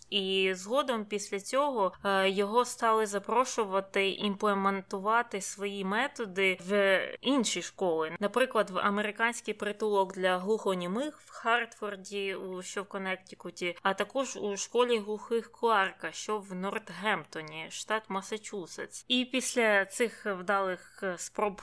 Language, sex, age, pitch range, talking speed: Ukrainian, female, 20-39, 190-220 Hz, 110 wpm